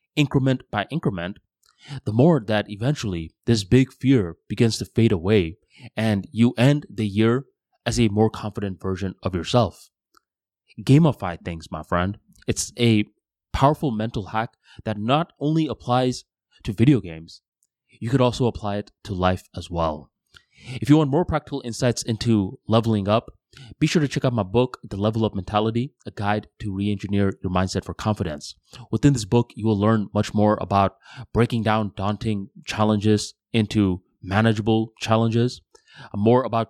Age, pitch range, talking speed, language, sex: 20-39, 100-120 Hz, 160 wpm, English, male